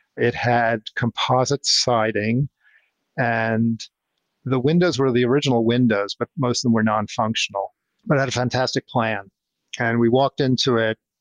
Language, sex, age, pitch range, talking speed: English, male, 50-69, 110-130 Hz, 150 wpm